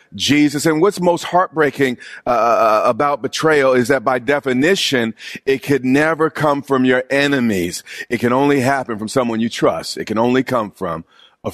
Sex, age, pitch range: male, 40-59, 120-150 Hz